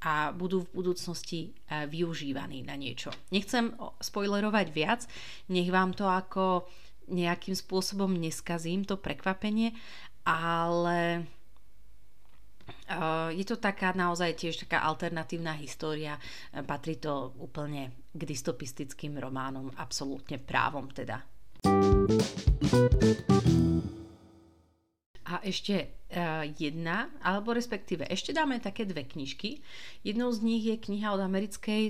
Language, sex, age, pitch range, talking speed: Slovak, female, 30-49, 150-195 Hz, 100 wpm